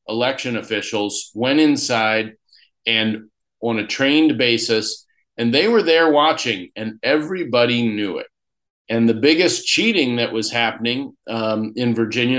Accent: American